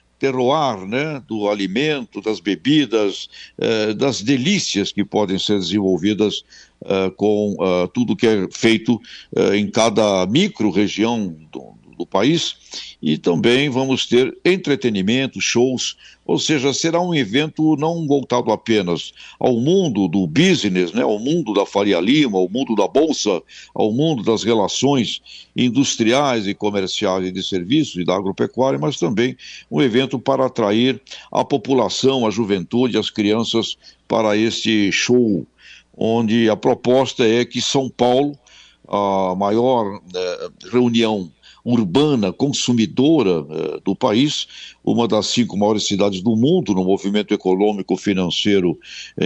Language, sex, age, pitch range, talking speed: Portuguese, male, 60-79, 100-130 Hz, 130 wpm